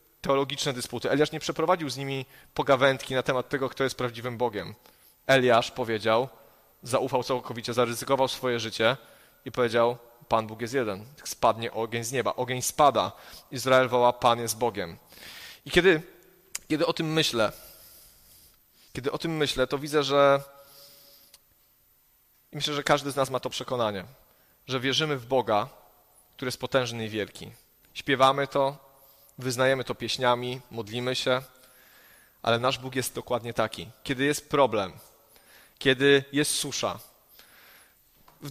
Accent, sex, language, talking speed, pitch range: native, male, Polish, 140 wpm, 120-140 Hz